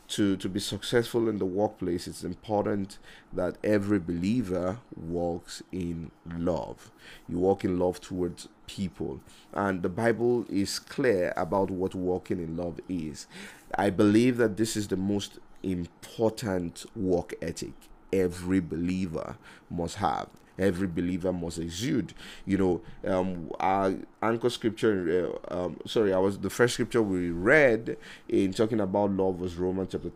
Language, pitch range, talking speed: English, 90-105 Hz, 145 wpm